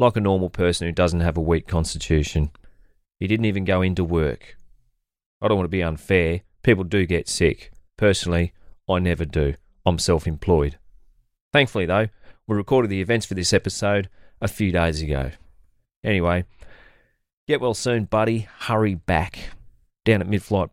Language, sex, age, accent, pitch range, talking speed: English, male, 30-49, Australian, 85-100 Hz, 160 wpm